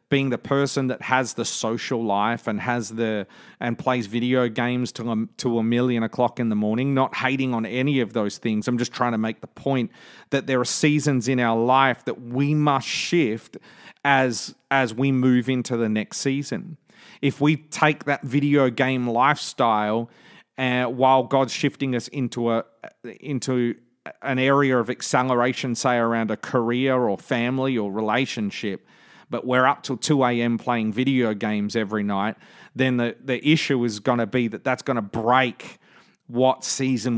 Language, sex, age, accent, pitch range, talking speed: English, male, 30-49, Australian, 115-135 Hz, 180 wpm